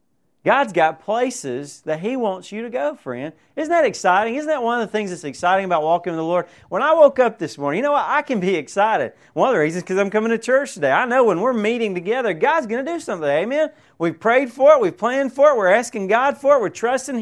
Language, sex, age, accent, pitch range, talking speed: English, male, 30-49, American, 170-250 Hz, 270 wpm